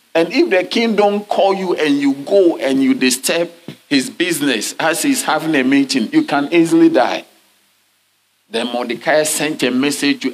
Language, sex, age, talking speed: English, male, 50-69, 175 wpm